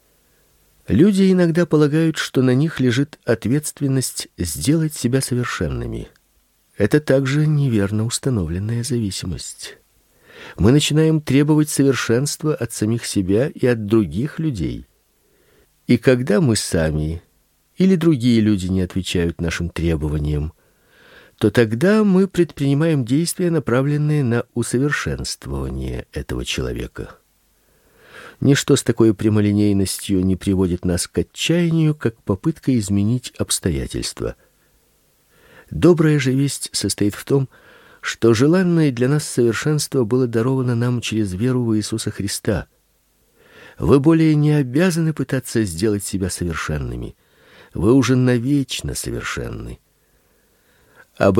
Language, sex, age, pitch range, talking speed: Russian, male, 50-69, 100-145 Hz, 110 wpm